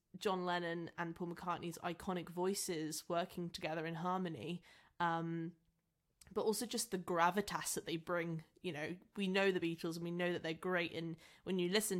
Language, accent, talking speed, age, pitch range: English, British, 180 wpm, 10-29, 170-190 Hz